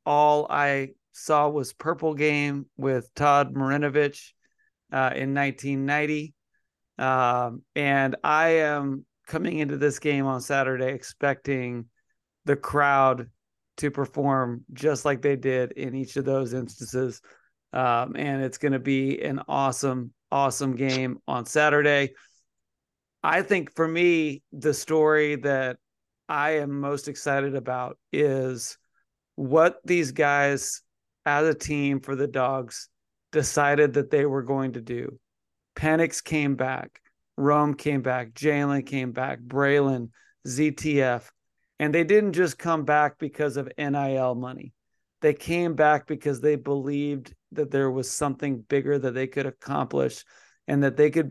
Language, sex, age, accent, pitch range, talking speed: English, male, 40-59, American, 130-150 Hz, 135 wpm